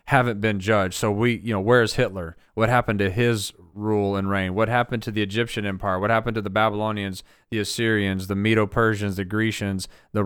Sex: male